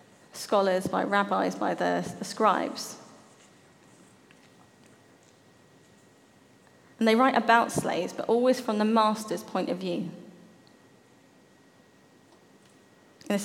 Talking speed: 95 wpm